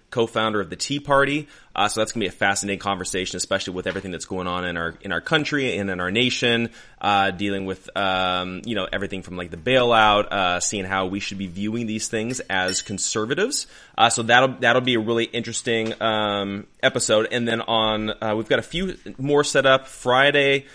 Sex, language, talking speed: male, English, 210 wpm